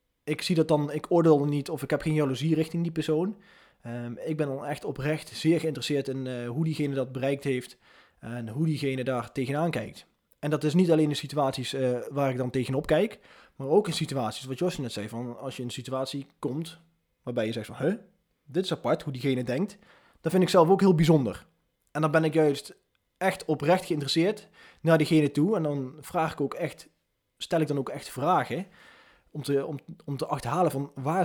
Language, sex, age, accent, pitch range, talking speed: Dutch, male, 20-39, Dutch, 135-165 Hz, 210 wpm